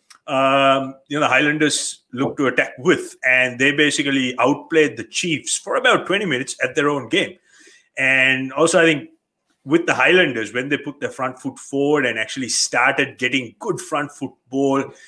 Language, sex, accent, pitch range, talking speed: English, male, Indian, 135-185 Hz, 175 wpm